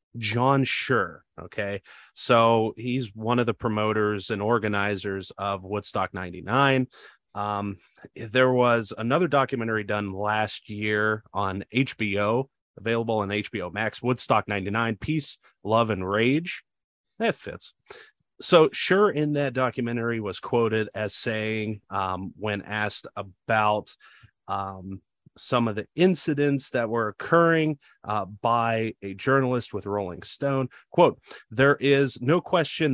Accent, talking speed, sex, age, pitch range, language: American, 125 wpm, male, 30-49, 105-135 Hz, English